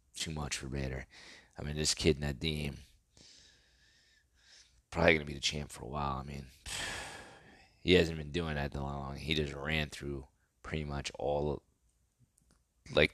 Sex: male